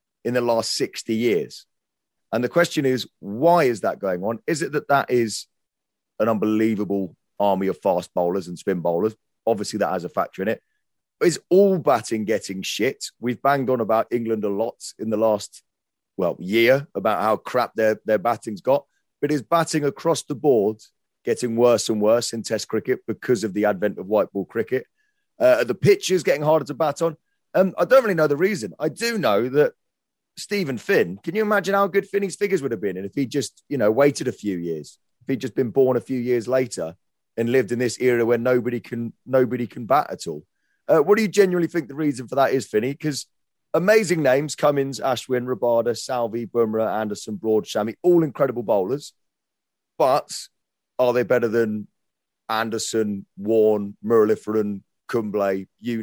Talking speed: 195 wpm